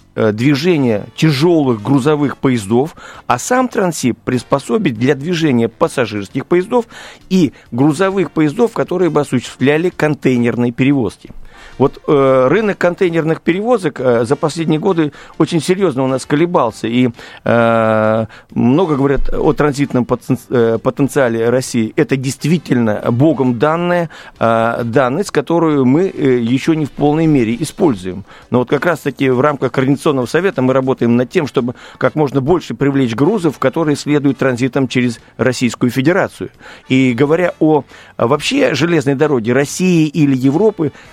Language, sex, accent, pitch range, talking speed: Russian, male, native, 125-165 Hz, 125 wpm